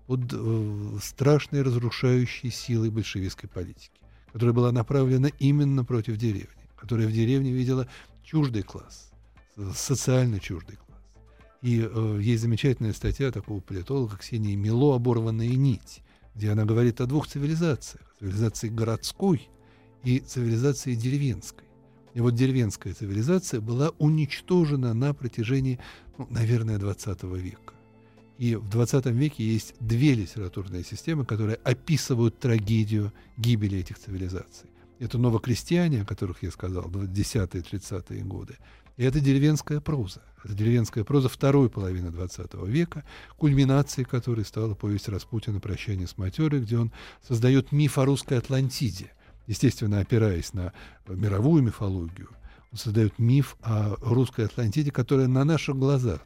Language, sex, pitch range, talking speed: Russian, male, 105-130 Hz, 125 wpm